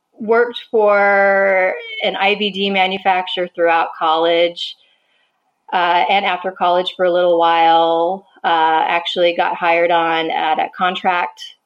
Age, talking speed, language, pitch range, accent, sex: 30-49, 120 wpm, English, 170-200 Hz, American, female